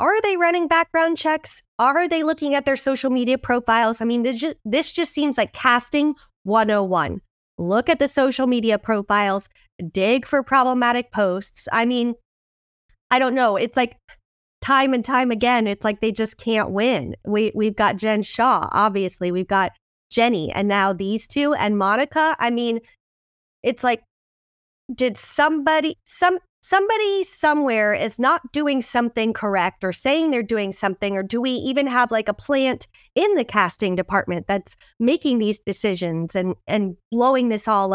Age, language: 20-39, English